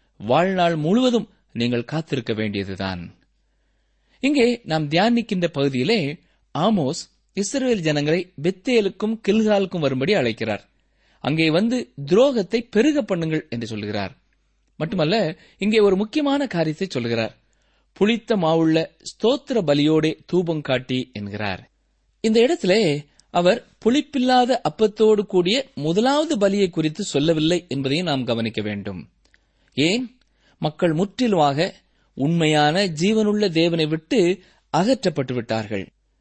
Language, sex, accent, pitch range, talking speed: Tamil, male, native, 135-205 Hz, 95 wpm